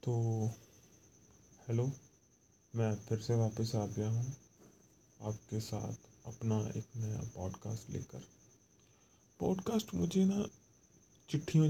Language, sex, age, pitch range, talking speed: Punjabi, male, 30-49, 110-140 Hz, 105 wpm